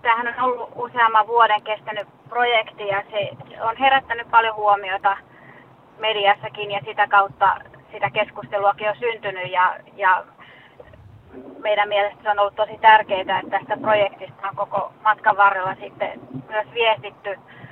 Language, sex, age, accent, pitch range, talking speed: Czech, female, 30-49, Finnish, 185-210 Hz, 130 wpm